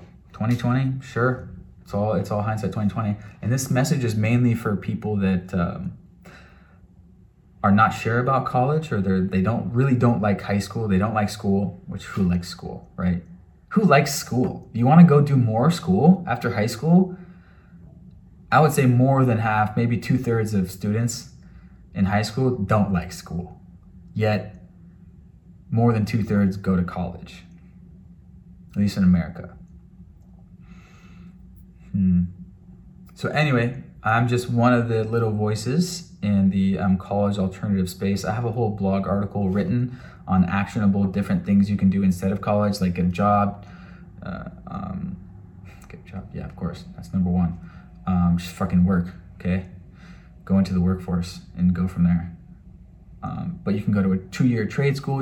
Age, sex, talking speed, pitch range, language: 20-39, male, 165 wpm, 90-115 Hz, English